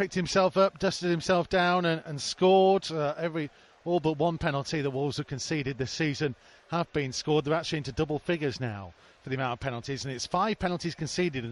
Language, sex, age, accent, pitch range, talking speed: English, male, 40-59, British, 140-180 Hz, 215 wpm